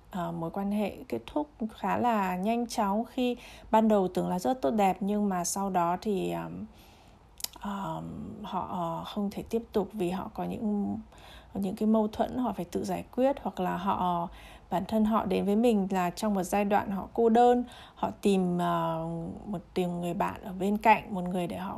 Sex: female